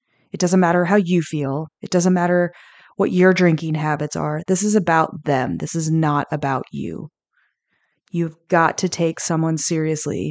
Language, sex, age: English, female, 20-39